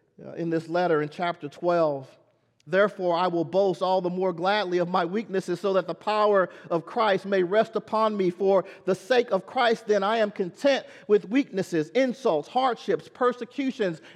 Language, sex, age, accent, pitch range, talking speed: English, male, 40-59, American, 150-195 Hz, 175 wpm